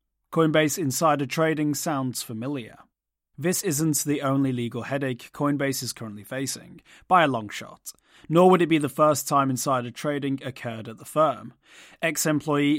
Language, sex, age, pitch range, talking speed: English, male, 30-49, 125-150 Hz, 155 wpm